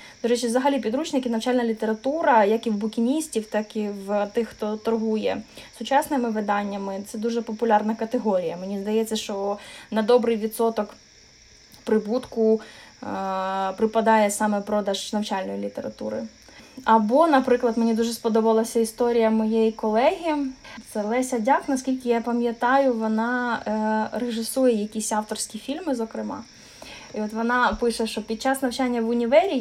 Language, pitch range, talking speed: Ukrainian, 220-255 Hz, 130 wpm